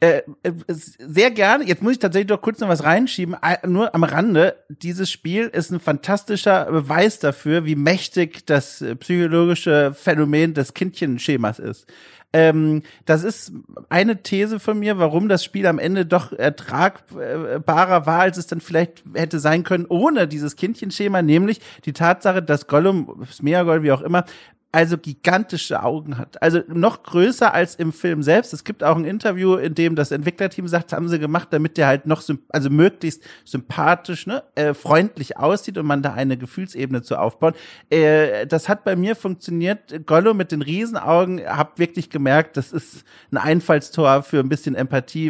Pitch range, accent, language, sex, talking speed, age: 150-185 Hz, German, German, male, 165 wpm, 40-59